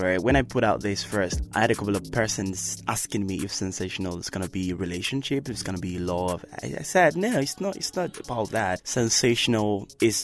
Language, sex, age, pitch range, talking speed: English, male, 20-39, 95-110 Hz, 235 wpm